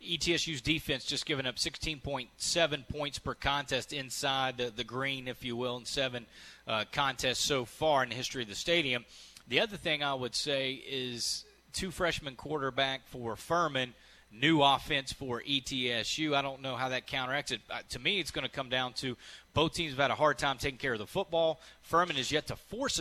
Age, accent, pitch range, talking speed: 30-49, American, 125-145 Hz, 200 wpm